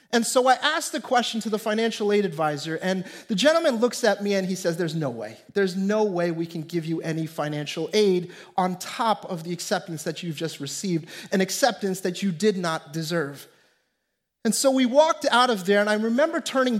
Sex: male